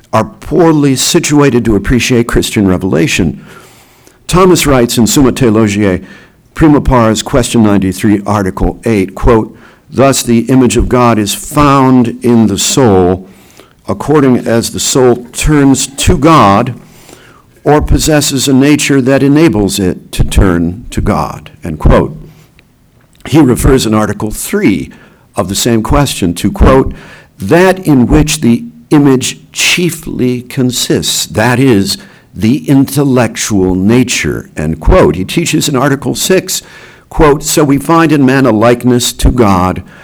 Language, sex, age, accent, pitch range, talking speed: English, male, 60-79, American, 105-140 Hz, 130 wpm